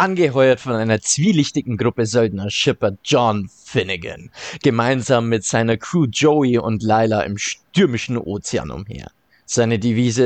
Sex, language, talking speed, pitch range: male, German, 130 wpm, 110-135 Hz